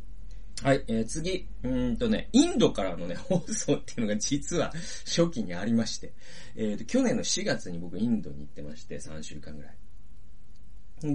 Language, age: Japanese, 40-59